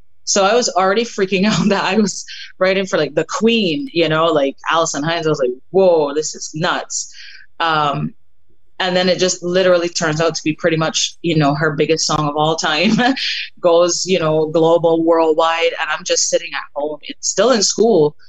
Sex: female